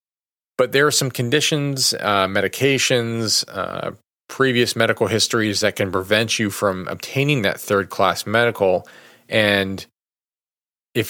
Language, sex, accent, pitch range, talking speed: English, male, American, 100-115 Hz, 120 wpm